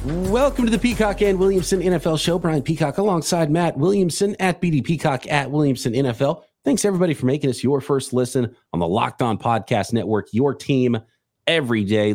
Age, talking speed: 30-49, 185 wpm